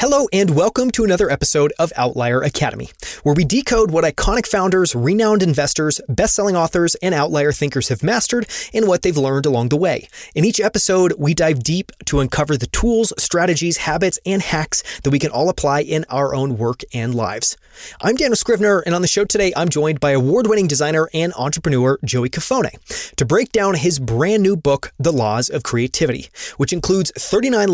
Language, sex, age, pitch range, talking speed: English, male, 30-49, 140-195 Hz, 190 wpm